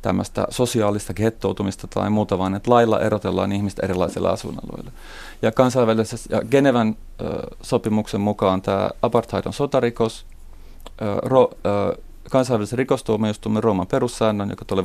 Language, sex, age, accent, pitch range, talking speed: Finnish, male, 30-49, native, 100-125 Hz, 125 wpm